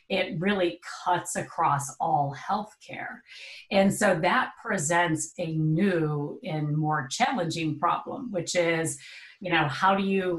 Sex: female